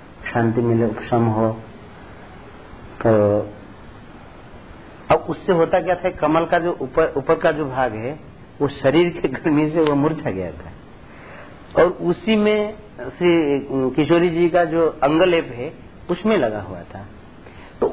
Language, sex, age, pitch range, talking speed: Hindi, male, 50-69, 120-160 Hz, 145 wpm